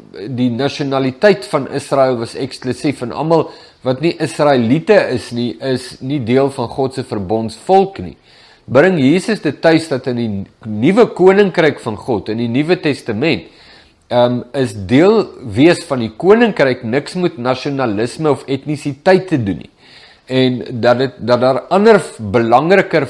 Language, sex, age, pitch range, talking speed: English, male, 50-69, 115-150 Hz, 150 wpm